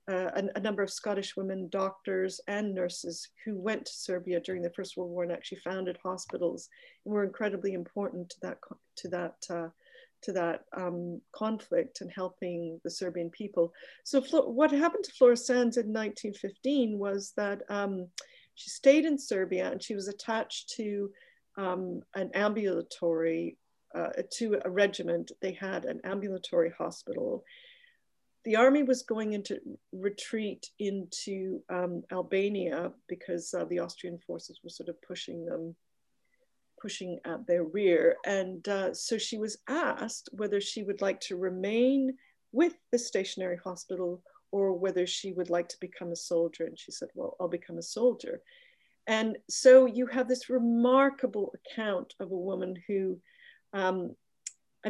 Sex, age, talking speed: female, 40-59, 155 wpm